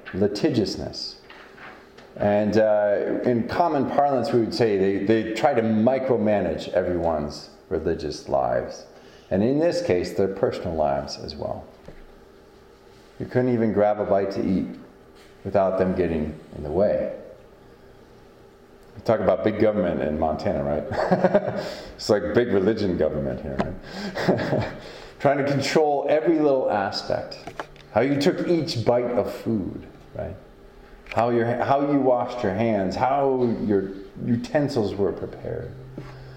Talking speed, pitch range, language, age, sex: 130 wpm, 95-135 Hz, English, 40-59, male